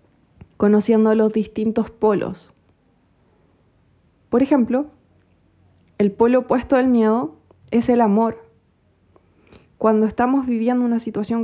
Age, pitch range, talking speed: 20-39, 165-210 Hz, 100 wpm